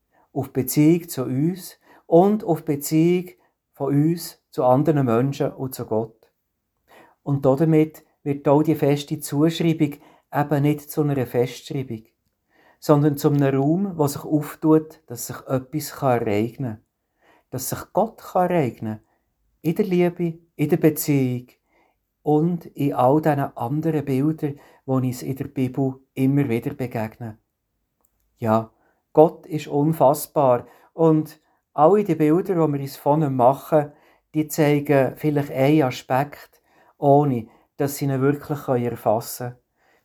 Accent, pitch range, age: Austrian, 130-155 Hz, 50-69